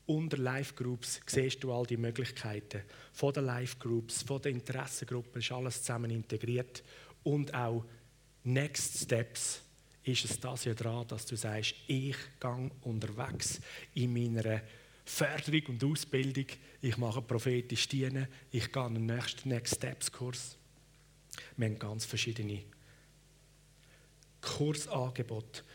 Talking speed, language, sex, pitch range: 130 wpm, German, male, 120-150 Hz